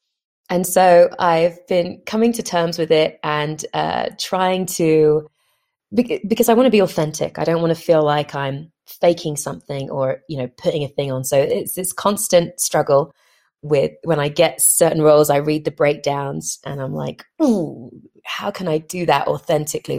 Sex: female